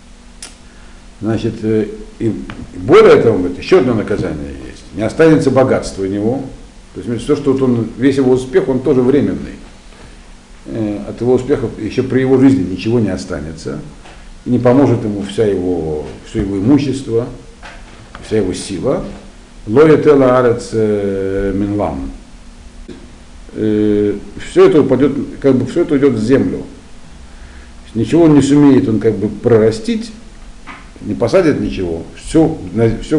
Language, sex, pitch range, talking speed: Russian, male, 95-130 Hz, 125 wpm